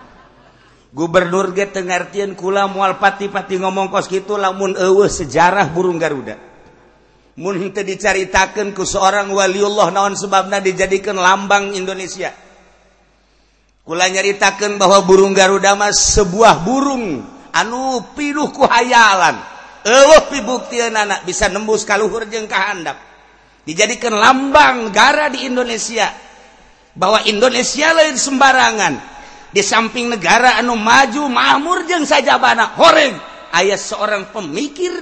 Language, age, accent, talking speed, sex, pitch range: Indonesian, 50-69, native, 110 wpm, male, 180-235 Hz